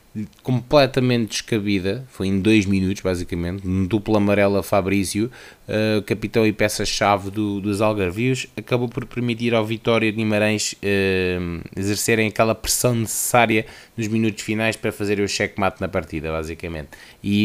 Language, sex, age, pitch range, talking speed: Portuguese, male, 20-39, 95-115 Hz, 150 wpm